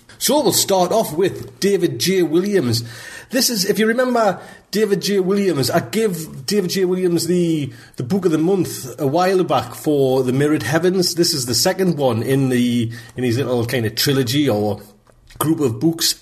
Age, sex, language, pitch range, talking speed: 30-49, male, English, 125-165 Hz, 190 wpm